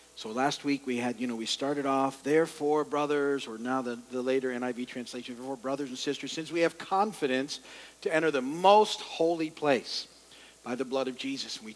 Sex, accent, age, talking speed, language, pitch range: male, American, 50-69, 205 wpm, English, 145-200 Hz